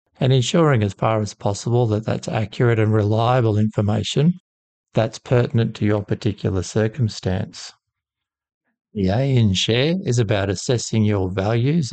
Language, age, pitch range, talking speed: English, 50-69, 105-120 Hz, 135 wpm